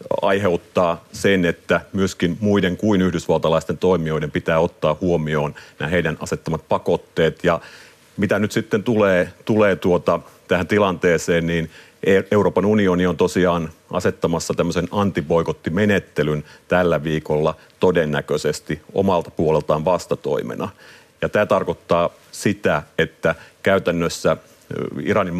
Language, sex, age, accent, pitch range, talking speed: Finnish, male, 40-59, native, 75-90 Hz, 105 wpm